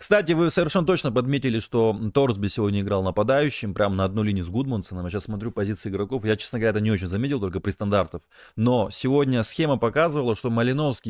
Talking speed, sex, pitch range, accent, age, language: 200 wpm, male, 100-130 Hz, native, 20-39, Russian